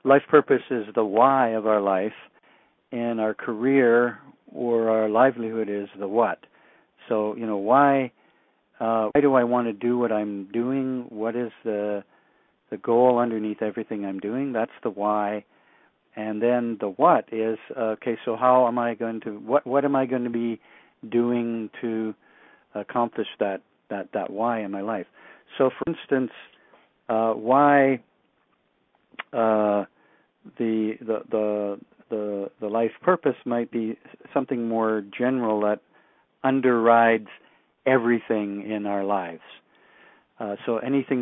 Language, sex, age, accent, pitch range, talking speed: English, male, 50-69, American, 110-125 Hz, 145 wpm